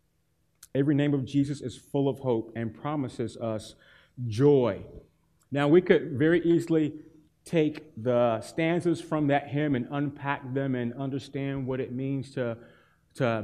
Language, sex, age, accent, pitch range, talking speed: English, male, 30-49, American, 130-150 Hz, 145 wpm